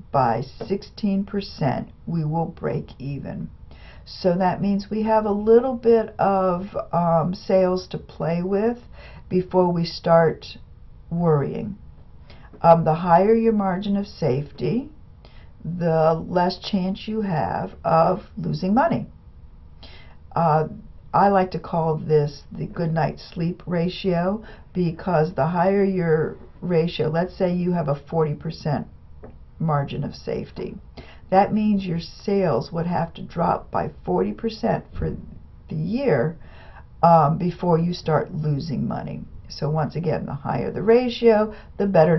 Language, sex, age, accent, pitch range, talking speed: English, female, 60-79, American, 155-200 Hz, 130 wpm